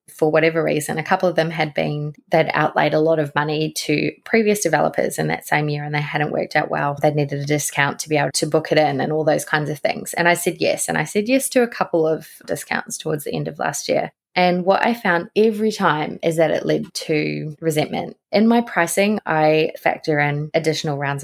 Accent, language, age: Australian, English, 20-39